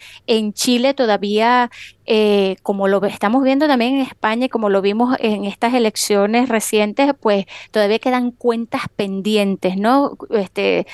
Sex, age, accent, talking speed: female, 20-39, American, 145 wpm